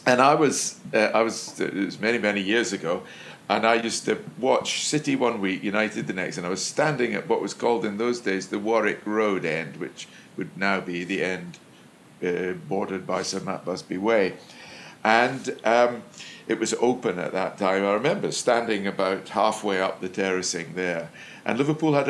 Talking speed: 195 wpm